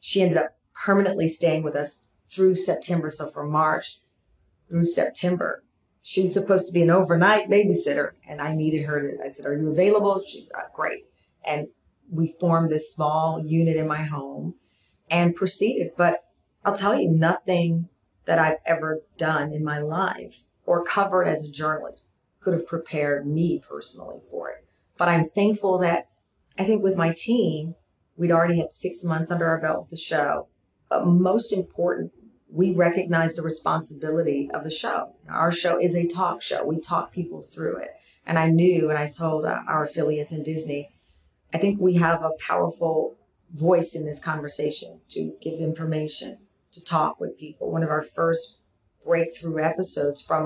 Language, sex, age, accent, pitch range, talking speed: English, female, 40-59, American, 155-175 Hz, 170 wpm